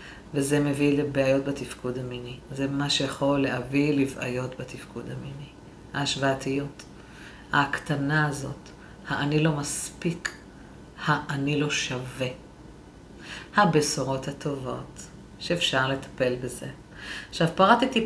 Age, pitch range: 50-69, 140-165 Hz